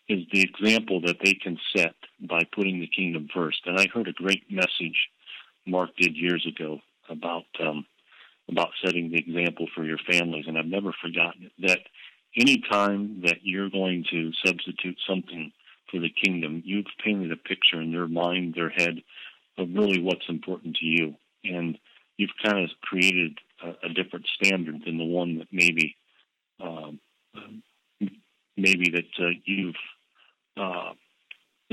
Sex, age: male, 50-69